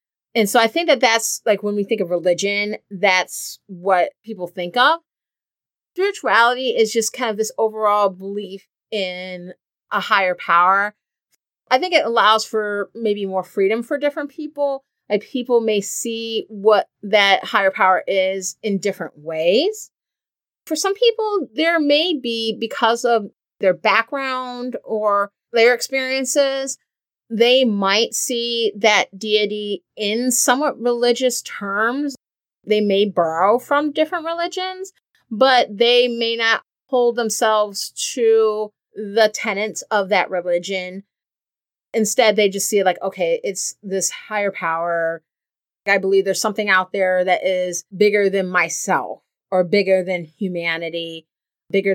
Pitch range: 190-240 Hz